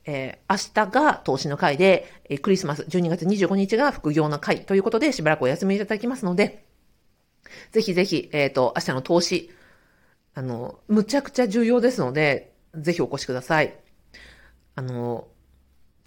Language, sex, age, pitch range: Japanese, female, 40-59, 155-240 Hz